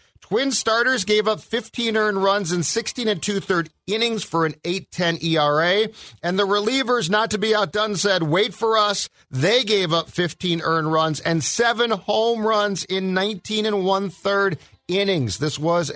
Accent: American